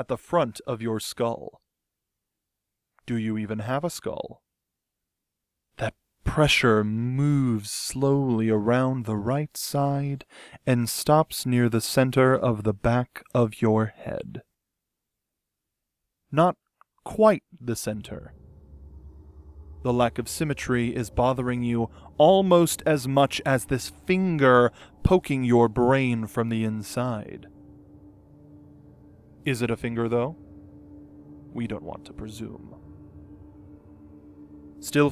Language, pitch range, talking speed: English, 100-140 Hz, 110 wpm